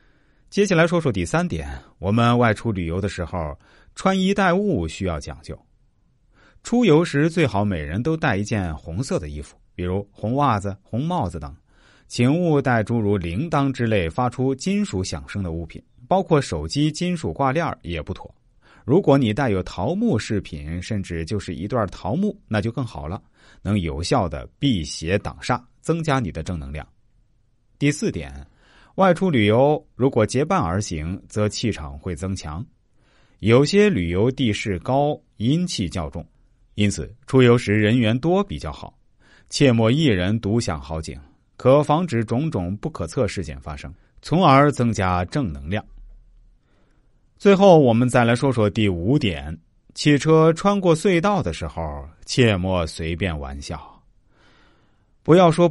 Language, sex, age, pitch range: Chinese, male, 30-49, 90-140 Hz